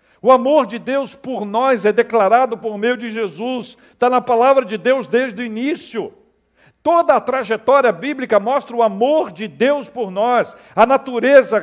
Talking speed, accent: 170 wpm, Brazilian